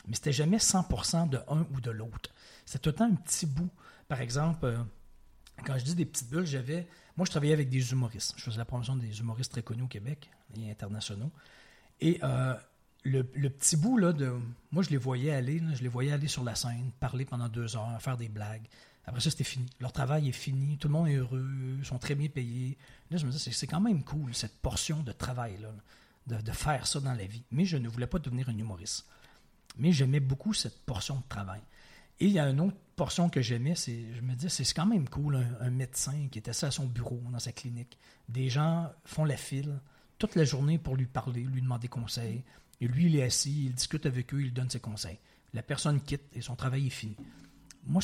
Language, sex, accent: French, male, Canadian